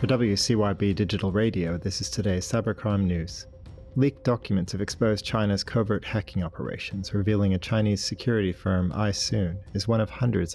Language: English